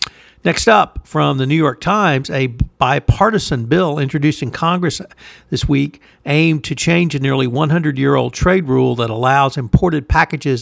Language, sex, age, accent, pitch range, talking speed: English, male, 60-79, American, 130-155 Hz, 155 wpm